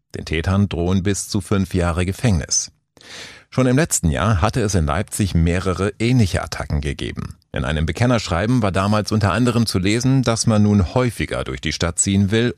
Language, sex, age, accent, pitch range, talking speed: German, male, 40-59, German, 85-115 Hz, 180 wpm